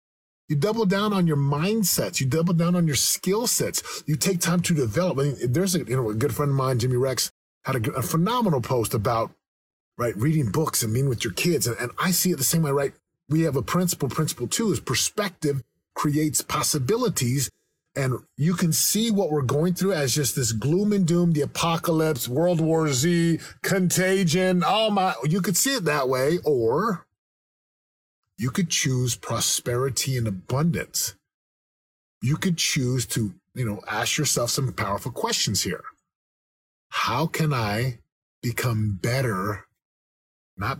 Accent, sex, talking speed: American, male, 170 wpm